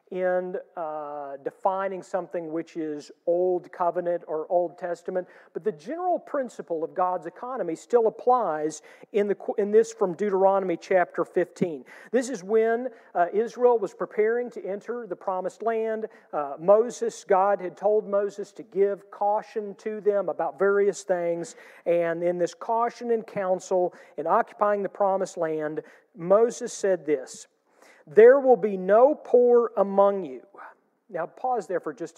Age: 50-69